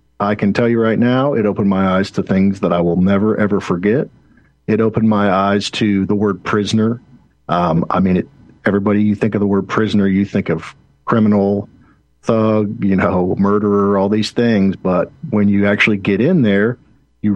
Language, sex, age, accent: English, male, 50-69, American